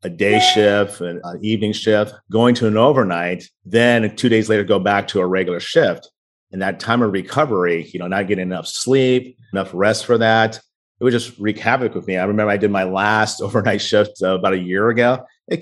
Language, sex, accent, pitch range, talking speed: English, male, American, 95-115 Hz, 215 wpm